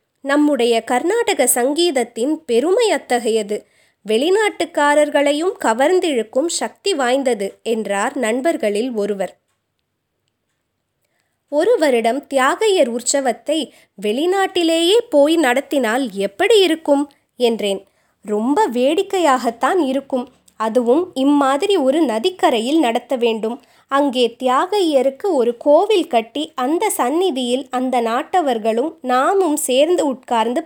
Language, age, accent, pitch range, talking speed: Tamil, 20-39, native, 235-320 Hz, 80 wpm